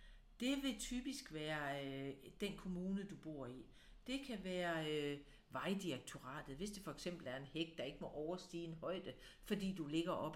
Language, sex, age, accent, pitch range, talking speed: Danish, female, 50-69, native, 165-225 Hz, 185 wpm